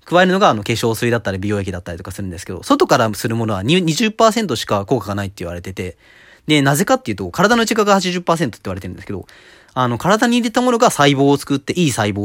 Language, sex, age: Japanese, male, 30-49